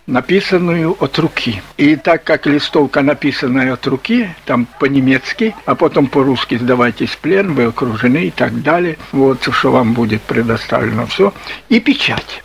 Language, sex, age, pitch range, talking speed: Russian, male, 60-79, 140-200 Hz, 150 wpm